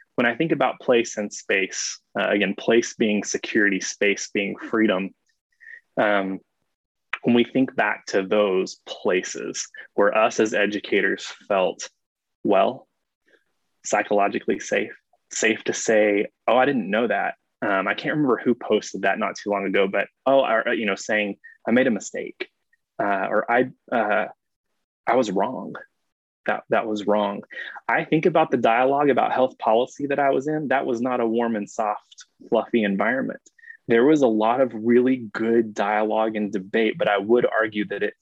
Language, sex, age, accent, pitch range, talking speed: English, male, 20-39, American, 105-140 Hz, 170 wpm